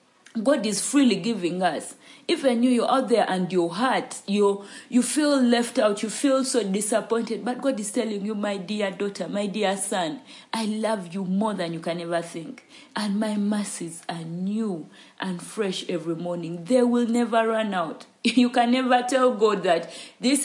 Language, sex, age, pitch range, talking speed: English, female, 40-59, 180-245 Hz, 185 wpm